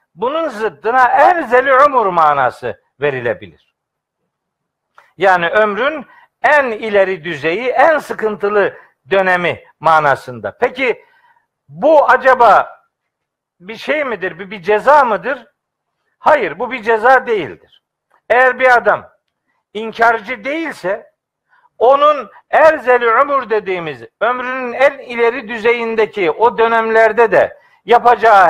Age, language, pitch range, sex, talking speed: 60-79, Turkish, 215-270 Hz, male, 95 wpm